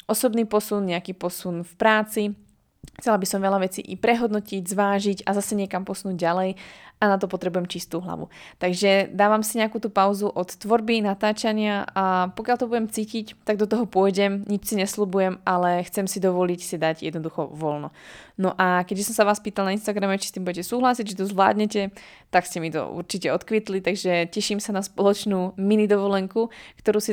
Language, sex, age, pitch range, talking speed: Slovak, female, 20-39, 185-215 Hz, 190 wpm